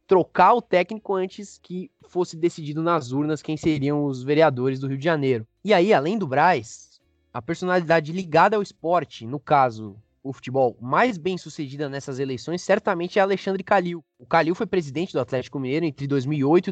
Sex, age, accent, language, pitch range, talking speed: male, 20-39, Brazilian, Portuguese, 150-195 Hz, 175 wpm